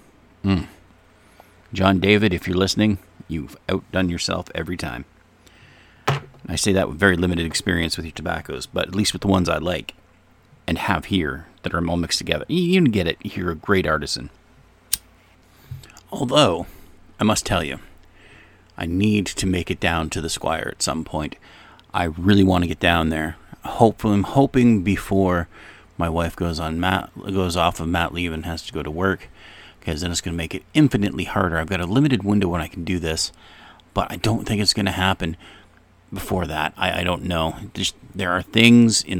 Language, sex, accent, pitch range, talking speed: English, male, American, 85-100 Hz, 190 wpm